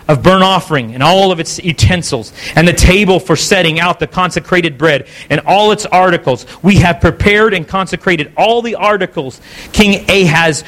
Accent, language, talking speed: American, English, 175 wpm